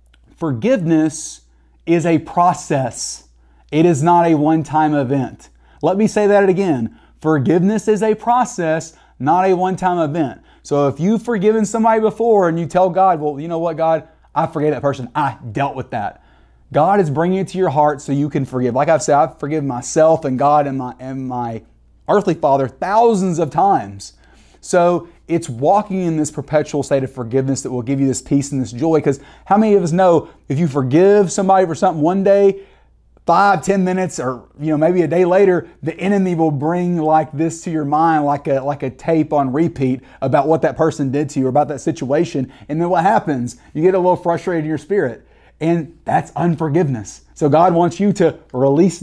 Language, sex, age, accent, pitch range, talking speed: English, male, 30-49, American, 140-175 Hz, 200 wpm